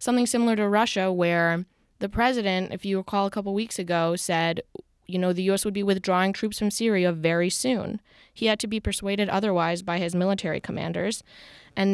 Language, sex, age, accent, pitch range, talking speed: English, female, 20-39, American, 175-210 Hz, 190 wpm